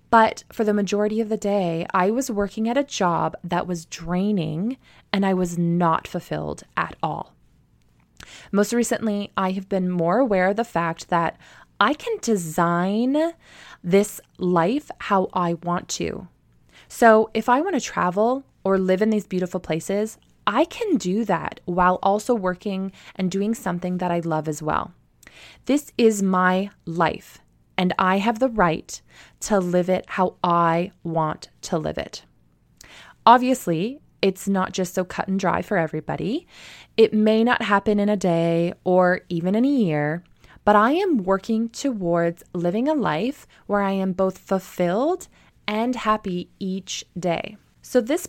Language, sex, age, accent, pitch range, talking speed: English, female, 20-39, American, 175-220 Hz, 160 wpm